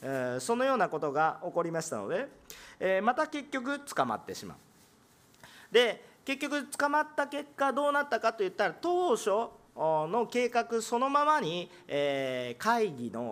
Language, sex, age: Japanese, male, 40-59